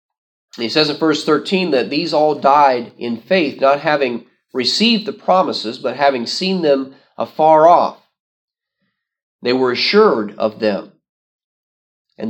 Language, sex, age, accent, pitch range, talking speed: English, male, 40-59, American, 125-165 Hz, 135 wpm